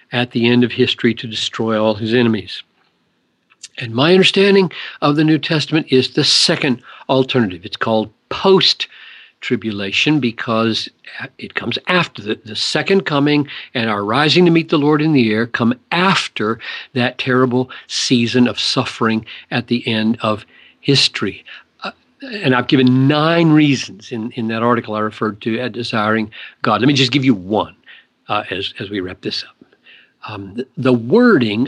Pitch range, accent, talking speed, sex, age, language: 115-150 Hz, American, 165 wpm, male, 50-69, English